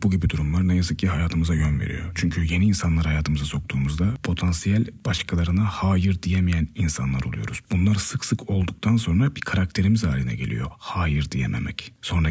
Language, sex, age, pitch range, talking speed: Turkish, male, 40-59, 80-100 Hz, 155 wpm